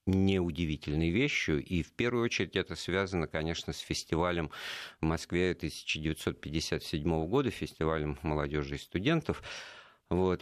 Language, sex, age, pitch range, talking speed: Russian, male, 50-69, 80-120 Hz, 115 wpm